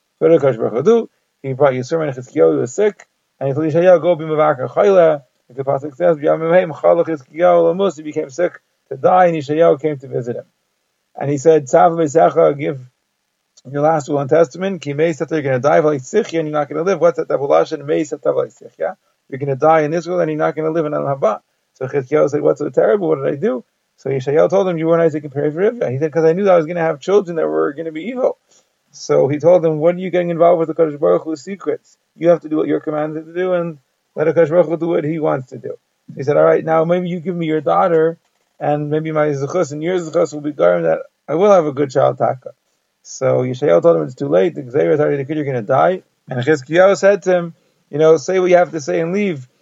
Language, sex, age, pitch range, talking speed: English, male, 30-49, 150-175 Hz, 245 wpm